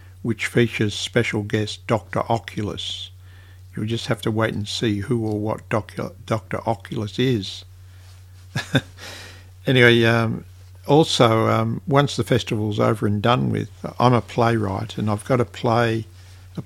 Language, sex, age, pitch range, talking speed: English, male, 60-79, 95-120 Hz, 140 wpm